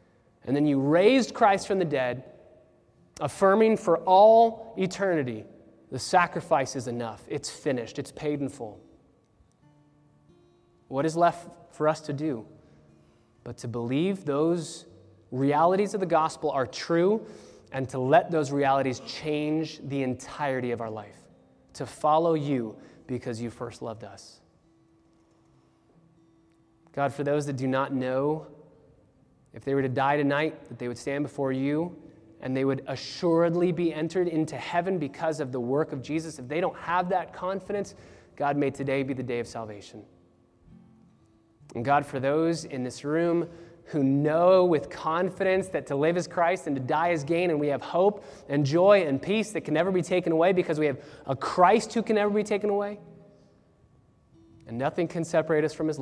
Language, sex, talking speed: English, male, 170 wpm